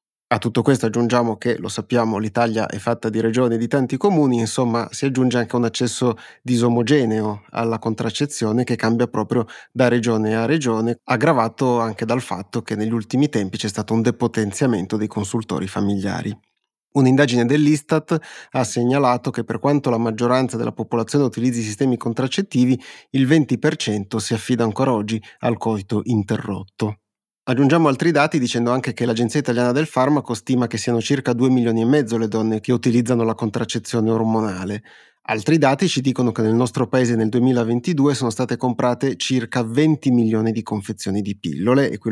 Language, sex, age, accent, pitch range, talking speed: Italian, male, 30-49, native, 110-130 Hz, 165 wpm